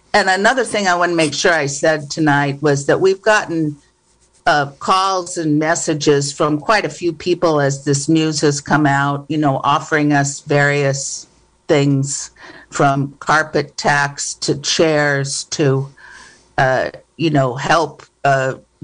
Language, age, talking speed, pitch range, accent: English, 50-69, 150 wpm, 140-160 Hz, American